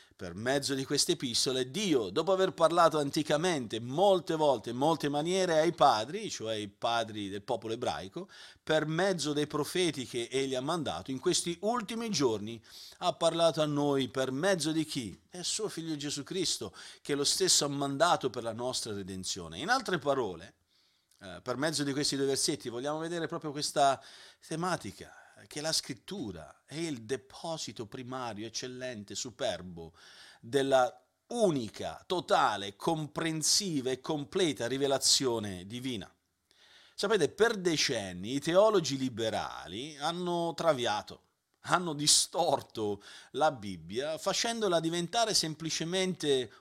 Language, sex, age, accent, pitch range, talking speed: Italian, male, 40-59, native, 125-165 Hz, 135 wpm